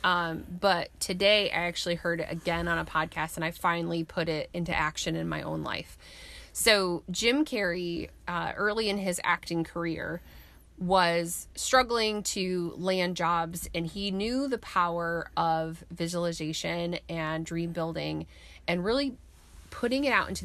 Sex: female